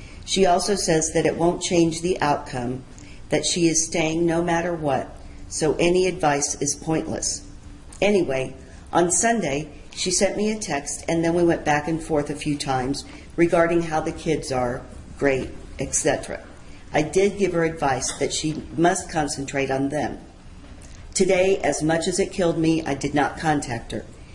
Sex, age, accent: female, 50-69, American